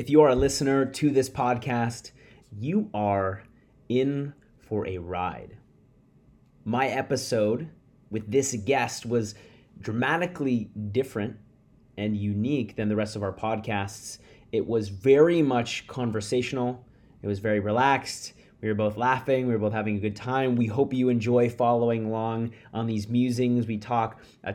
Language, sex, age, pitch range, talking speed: English, male, 30-49, 105-125 Hz, 150 wpm